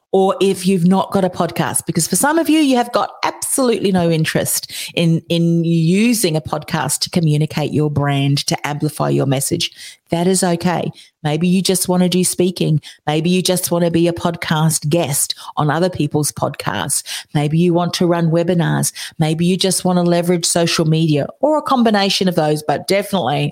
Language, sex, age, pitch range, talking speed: English, female, 40-59, 155-190 Hz, 190 wpm